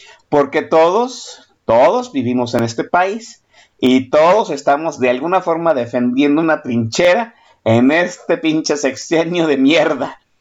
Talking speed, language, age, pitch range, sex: 125 wpm, Spanish, 50-69, 125-185 Hz, male